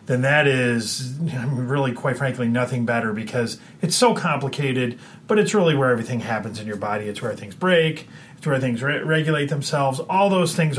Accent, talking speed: American, 185 wpm